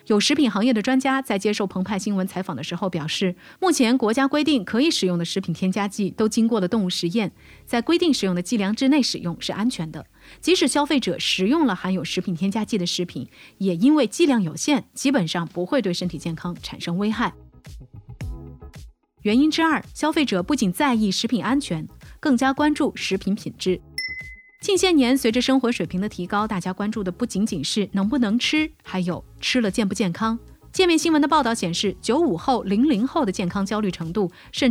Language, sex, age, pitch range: Chinese, female, 30-49, 185-270 Hz